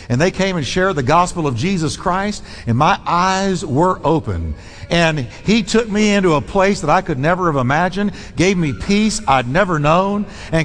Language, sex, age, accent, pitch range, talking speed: English, male, 60-79, American, 130-205 Hz, 195 wpm